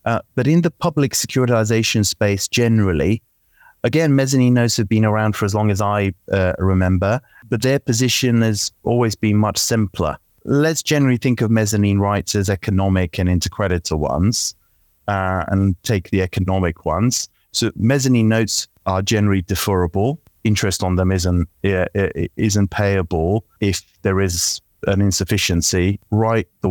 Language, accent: German, British